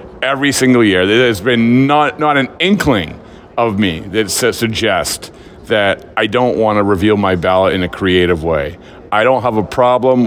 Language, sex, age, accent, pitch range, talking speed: English, male, 40-59, American, 100-140 Hz, 180 wpm